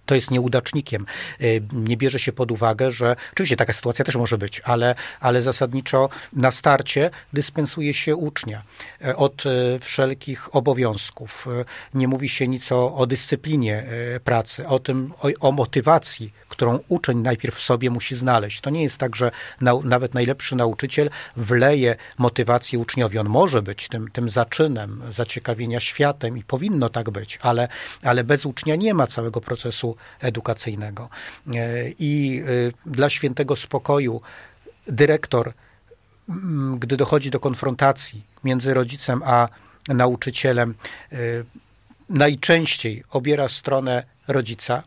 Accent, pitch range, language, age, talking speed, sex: native, 120-140 Hz, Polish, 40-59, 130 wpm, male